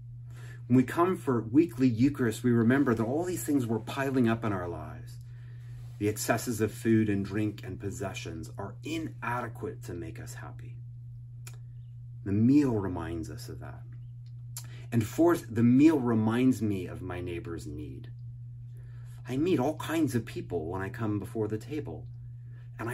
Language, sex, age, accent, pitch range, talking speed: English, male, 30-49, American, 115-120 Hz, 155 wpm